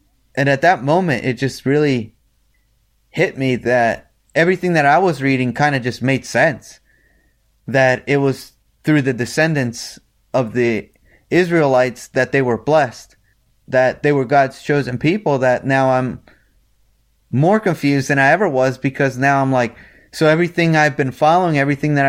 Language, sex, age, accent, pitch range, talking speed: English, male, 20-39, American, 115-150 Hz, 160 wpm